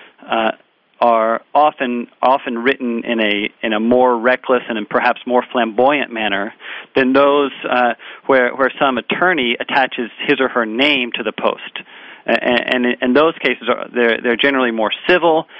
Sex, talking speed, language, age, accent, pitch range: male, 160 wpm, English, 40-59, American, 115-140 Hz